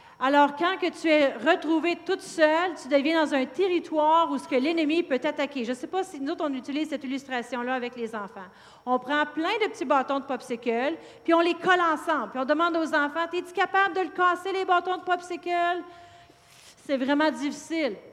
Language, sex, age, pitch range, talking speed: French, female, 40-59, 260-325 Hz, 210 wpm